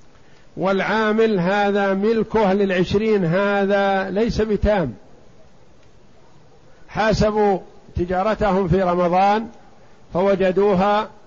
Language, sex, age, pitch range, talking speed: Arabic, male, 50-69, 165-200 Hz, 65 wpm